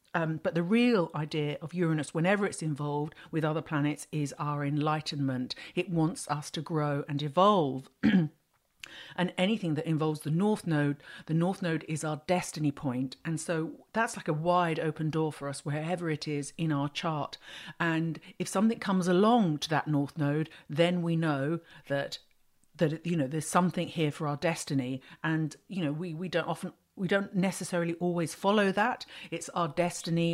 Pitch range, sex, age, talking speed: 150-180 Hz, female, 50-69, 180 wpm